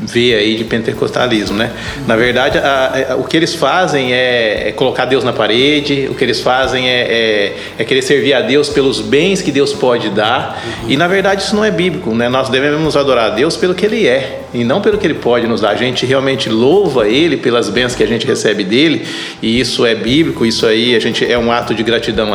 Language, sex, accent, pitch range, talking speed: Portuguese, male, Brazilian, 125-170 Hz, 235 wpm